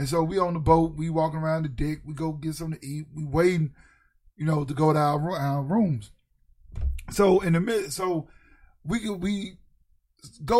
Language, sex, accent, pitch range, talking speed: English, male, American, 145-200 Hz, 205 wpm